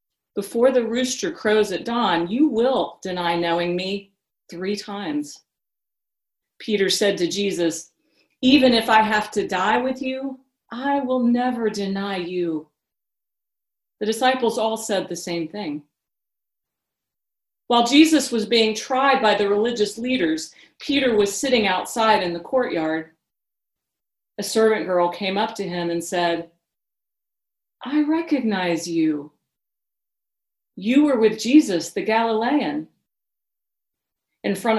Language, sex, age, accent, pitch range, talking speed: English, female, 40-59, American, 175-250 Hz, 125 wpm